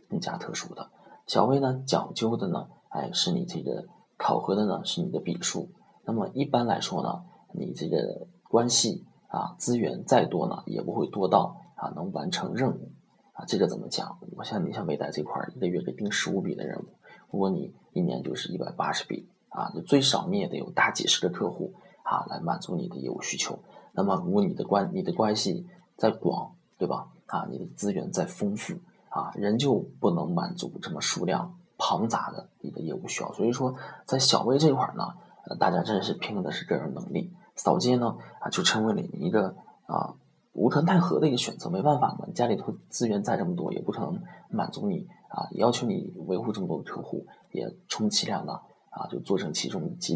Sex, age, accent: male, 20-39, native